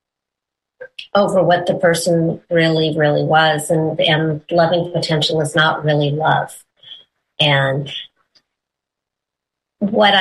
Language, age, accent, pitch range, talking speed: English, 40-59, American, 170-200 Hz, 100 wpm